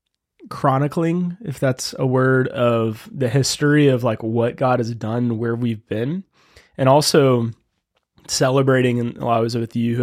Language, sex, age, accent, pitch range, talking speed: English, male, 20-39, American, 115-140 Hz, 155 wpm